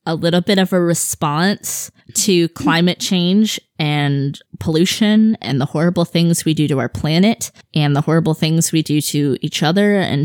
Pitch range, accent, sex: 160-185 Hz, American, female